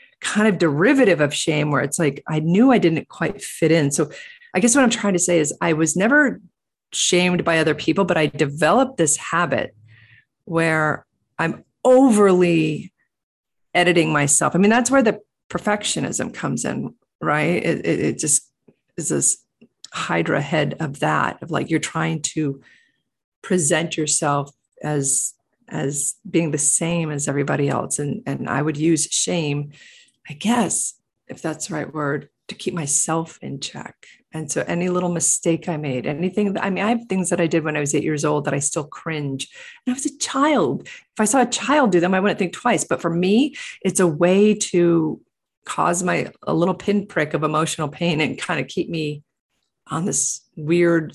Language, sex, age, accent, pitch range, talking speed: English, female, 40-59, American, 150-195 Hz, 195 wpm